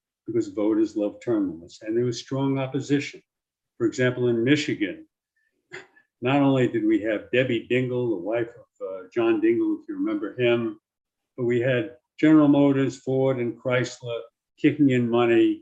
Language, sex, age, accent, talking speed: English, male, 50-69, American, 160 wpm